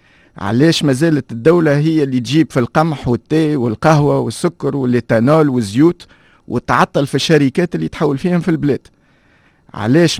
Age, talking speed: 50-69, 135 wpm